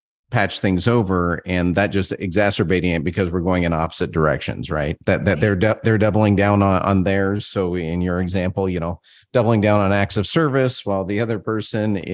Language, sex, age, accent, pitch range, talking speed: English, male, 40-59, American, 90-110 Hz, 205 wpm